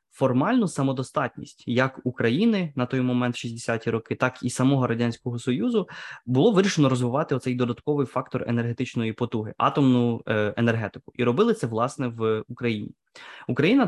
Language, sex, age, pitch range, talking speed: Ukrainian, male, 20-39, 115-135 Hz, 135 wpm